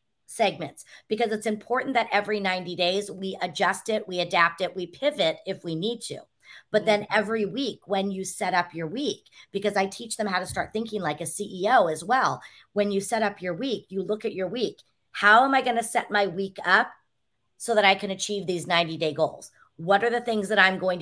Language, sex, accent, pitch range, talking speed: English, female, American, 180-215 Hz, 225 wpm